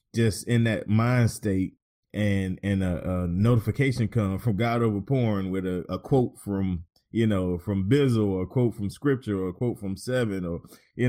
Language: English